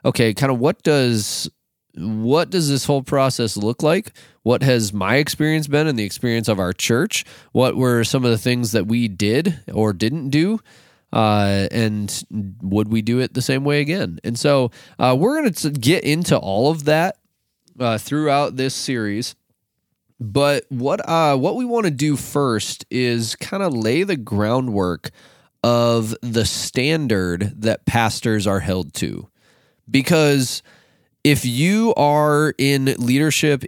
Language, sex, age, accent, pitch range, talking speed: English, male, 20-39, American, 110-145 Hz, 160 wpm